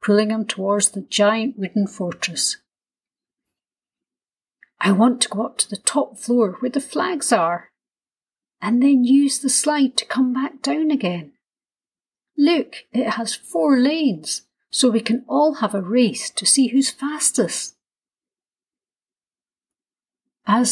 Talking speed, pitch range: 135 wpm, 205-280 Hz